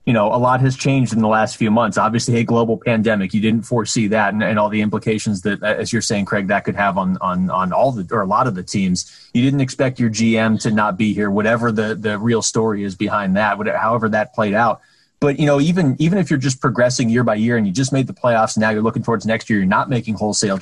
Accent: American